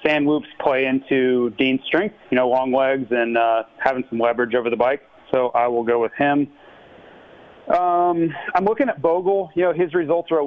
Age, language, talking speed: 30-49, English, 200 wpm